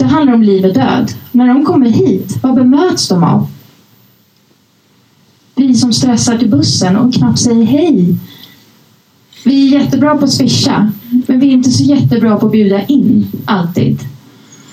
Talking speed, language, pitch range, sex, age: 160 wpm, English, 200-260 Hz, female, 30-49